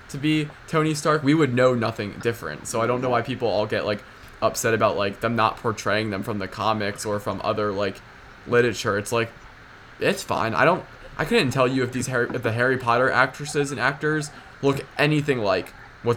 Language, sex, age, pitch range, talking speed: English, male, 20-39, 110-125 Hz, 205 wpm